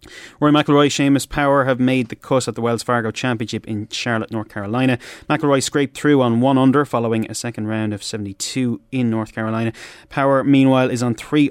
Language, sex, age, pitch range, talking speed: English, male, 30-49, 110-135 Hz, 195 wpm